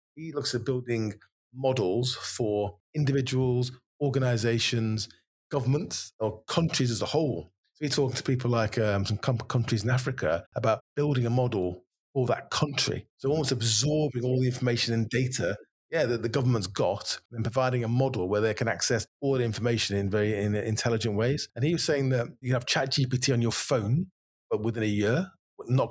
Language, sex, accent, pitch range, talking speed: English, male, British, 115-135 Hz, 180 wpm